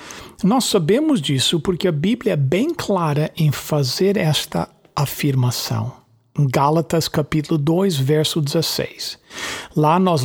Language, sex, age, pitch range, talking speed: English, male, 60-79, 140-190 Hz, 115 wpm